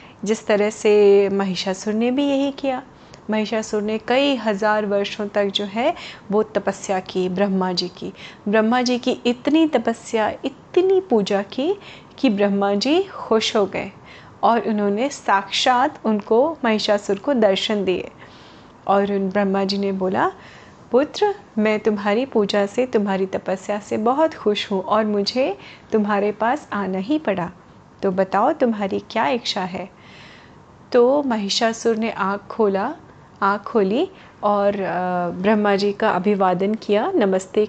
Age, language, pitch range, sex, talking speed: 30-49, Hindi, 200-245 Hz, female, 140 wpm